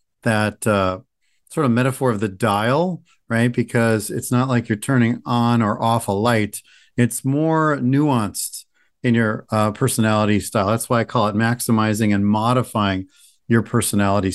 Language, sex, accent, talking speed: English, male, American, 160 wpm